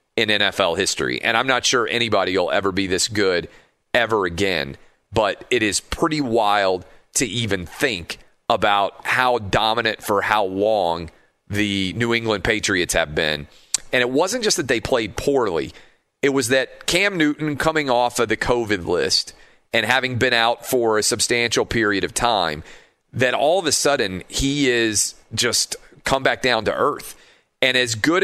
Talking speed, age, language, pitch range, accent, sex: 170 wpm, 40-59, English, 100-125 Hz, American, male